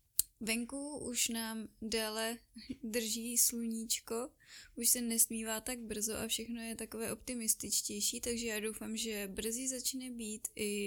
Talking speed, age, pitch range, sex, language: 130 wpm, 10-29, 215-235 Hz, female, Czech